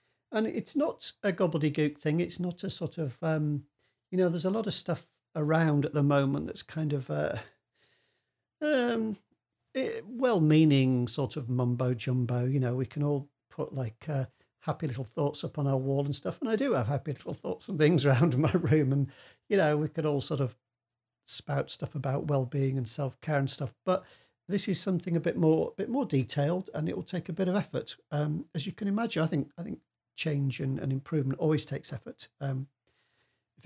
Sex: male